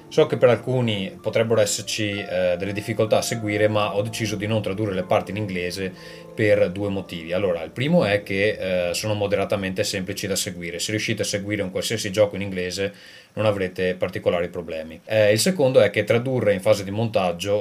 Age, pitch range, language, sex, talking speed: 20-39, 95-110 Hz, Italian, male, 200 wpm